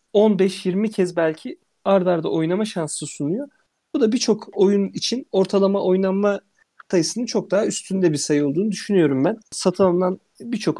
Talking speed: 145 wpm